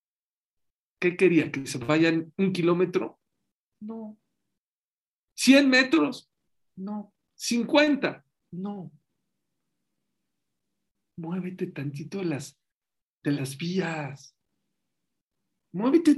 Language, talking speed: English, 80 wpm